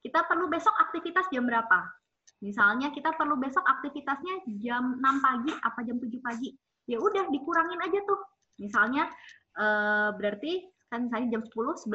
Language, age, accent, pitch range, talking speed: Indonesian, 20-39, native, 235-330 Hz, 150 wpm